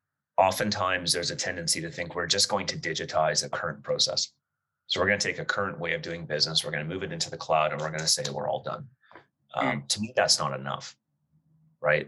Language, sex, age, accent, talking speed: English, male, 30-49, American, 240 wpm